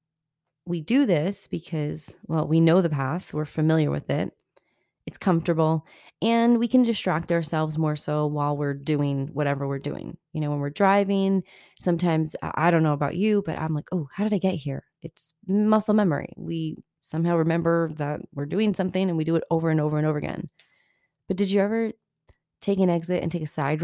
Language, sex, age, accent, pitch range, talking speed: English, female, 30-49, American, 155-195 Hz, 200 wpm